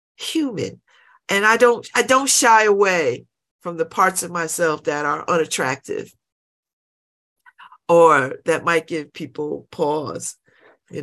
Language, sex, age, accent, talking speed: English, female, 50-69, American, 125 wpm